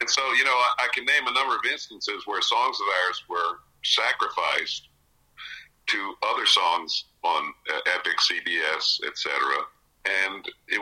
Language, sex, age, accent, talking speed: English, male, 50-69, American, 150 wpm